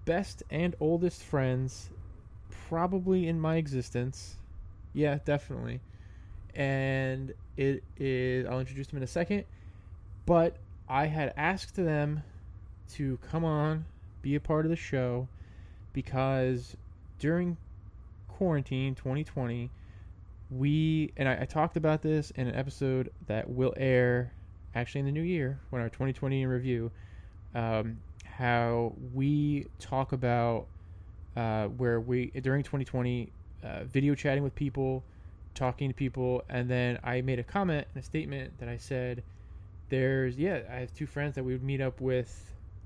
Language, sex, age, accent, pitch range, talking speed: English, male, 20-39, American, 100-140 Hz, 140 wpm